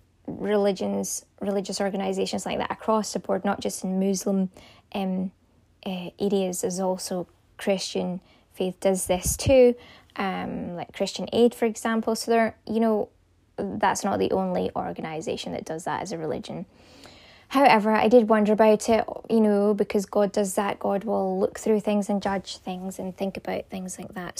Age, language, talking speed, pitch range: 20-39, English, 170 wpm, 185-210 Hz